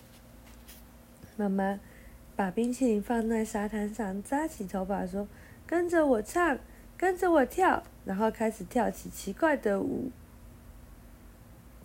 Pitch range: 220-310 Hz